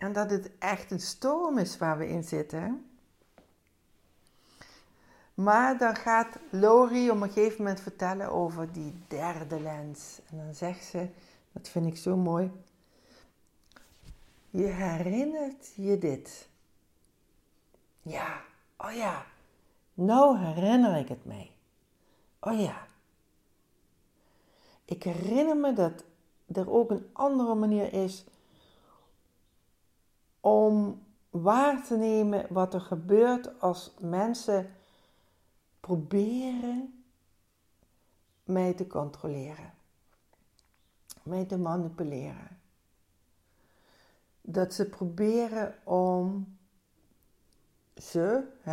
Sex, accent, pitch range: female, Dutch, 160-210 Hz